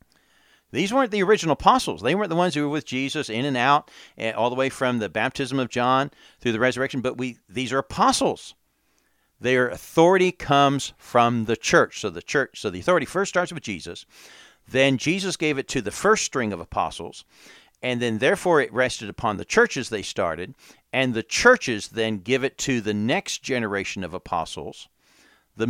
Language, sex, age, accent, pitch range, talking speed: English, male, 50-69, American, 115-150 Hz, 190 wpm